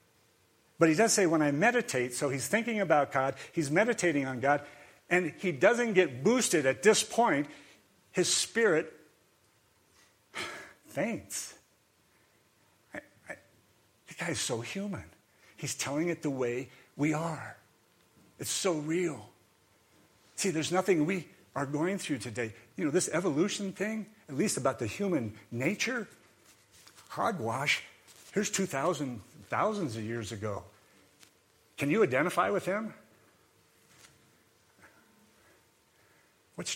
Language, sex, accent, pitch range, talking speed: English, male, American, 130-190 Hz, 120 wpm